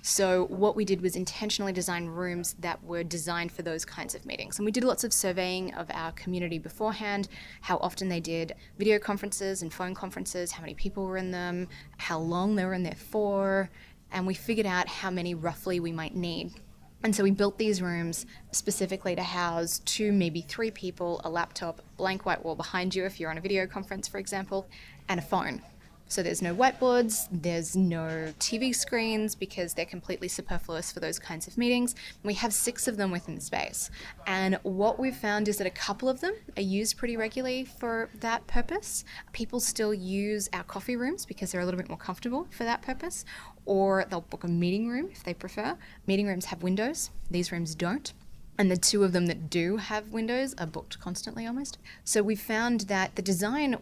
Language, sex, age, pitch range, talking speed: English, female, 20-39, 175-215 Hz, 205 wpm